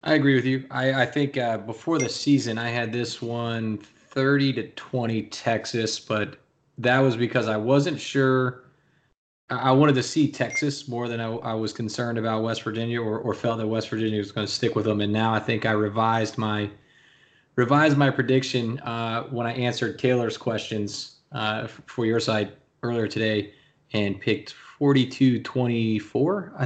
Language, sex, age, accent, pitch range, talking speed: English, male, 20-39, American, 110-135 Hz, 175 wpm